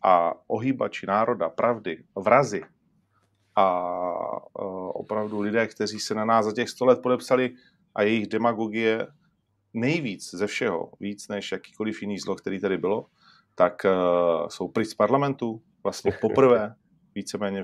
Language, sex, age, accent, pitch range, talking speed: Czech, male, 40-59, native, 95-115 Hz, 135 wpm